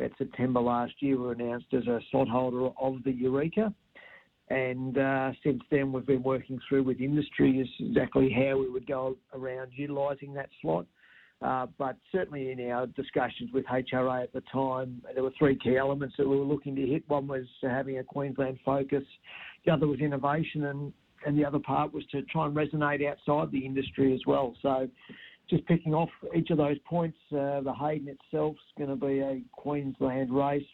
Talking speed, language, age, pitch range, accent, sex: 195 wpm, English, 50-69, 130-145 Hz, Australian, male